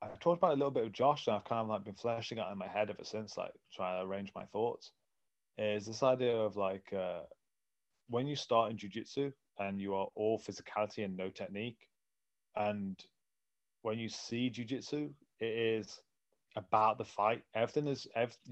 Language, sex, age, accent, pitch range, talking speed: English, male, 30-49, British, 100-115 Hz, 195 wpm